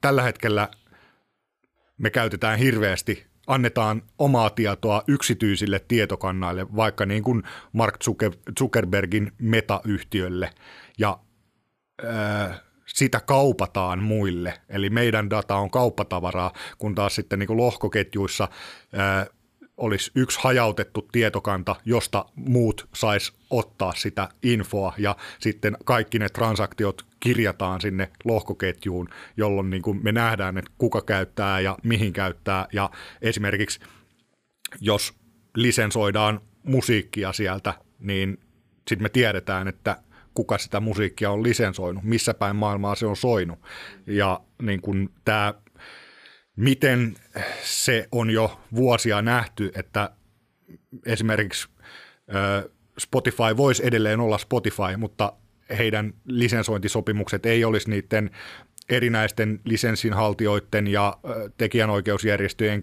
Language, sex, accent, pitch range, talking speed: Finnish, male, native, 100-115 Hz, 105 wpm